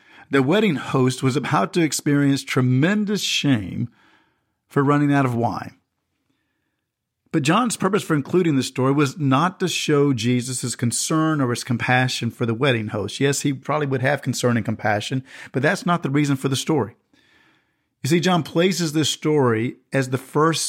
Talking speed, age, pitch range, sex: 175 wpm, 50-69, 125-160 Hz, male